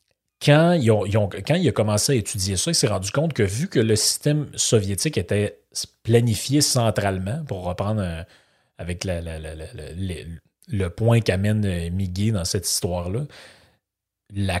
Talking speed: 145 wpm